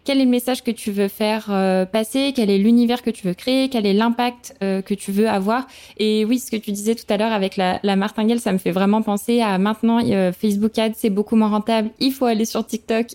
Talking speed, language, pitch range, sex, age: 260 wpm, French, 200-235 Hz, female, 20-39